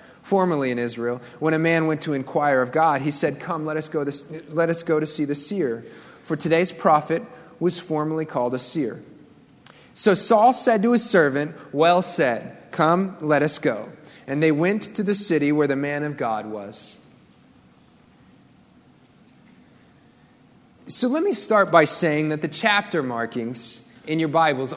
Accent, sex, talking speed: American, male, 170 wpm